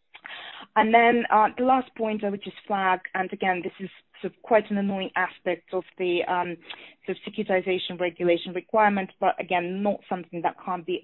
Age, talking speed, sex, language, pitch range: 20-39, 170 wpm, female, English, 170-200 Hz